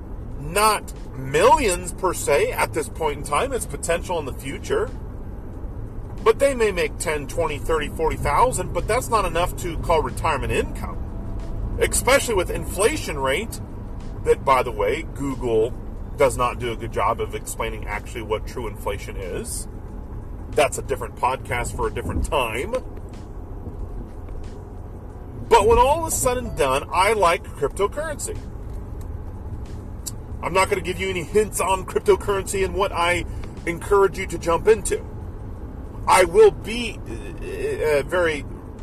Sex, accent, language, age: male, American, English, 40-59